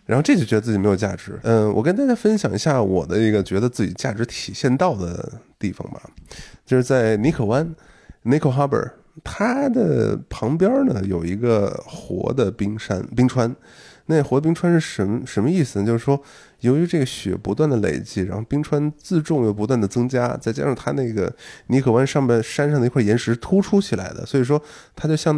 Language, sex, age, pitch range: Chinese, male, 20-39, 105-155 Hz